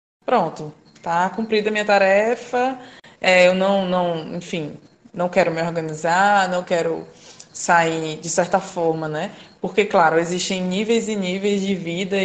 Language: Portuguese